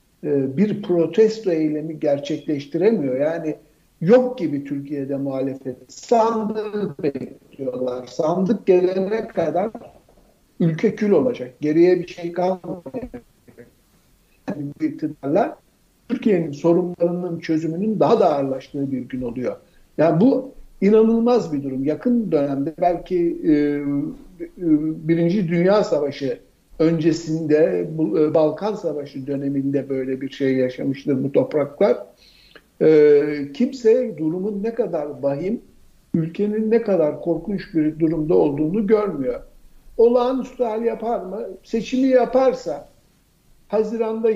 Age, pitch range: 60-79, 145-210 Hz